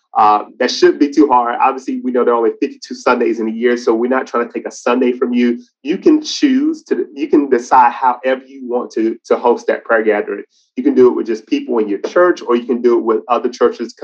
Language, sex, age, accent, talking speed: English, male, 30-49, American, 260 wpm